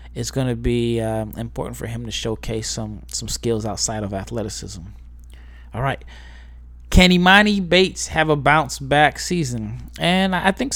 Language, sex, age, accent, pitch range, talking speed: English, male, 20-39, American, 115-140 Hz, 160 wpm